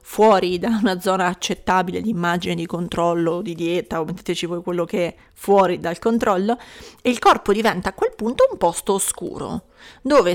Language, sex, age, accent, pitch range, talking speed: Italian, female, 30-49, native, 185-235 Hz, 180 wpm